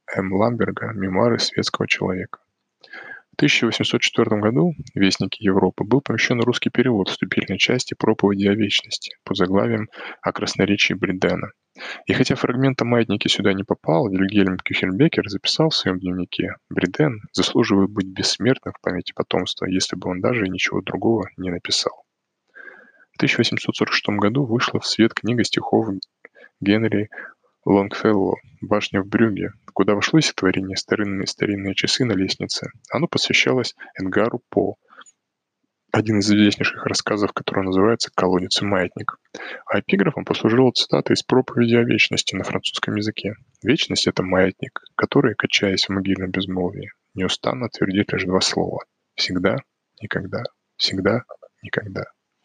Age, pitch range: 20-39, 95-115 Hz